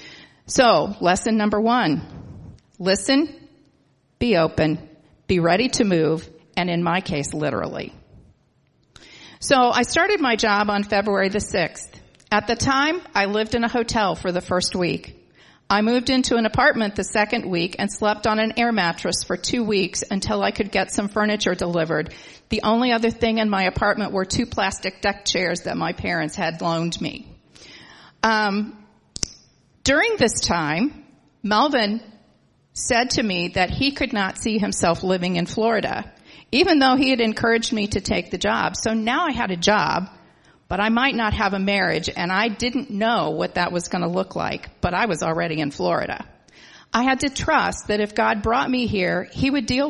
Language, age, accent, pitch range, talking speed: English, 40-59, American, 185-235 Hz, 180 wpm